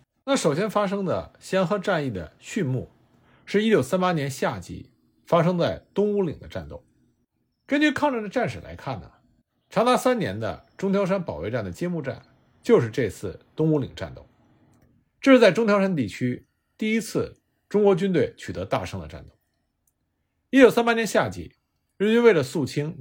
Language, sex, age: Chinese, male, 50-69